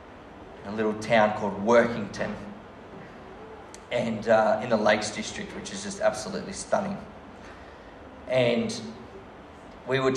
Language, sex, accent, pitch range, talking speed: English, male, Australian, 105-120 Hz, 120 wpm